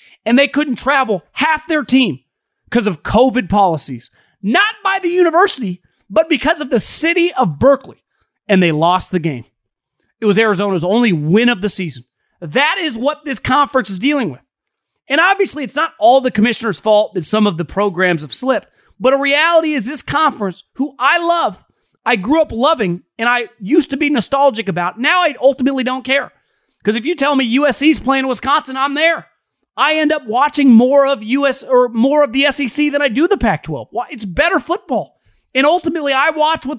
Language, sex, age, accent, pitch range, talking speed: English, male, 30-49, American, 205-295 Hz, 190 wpm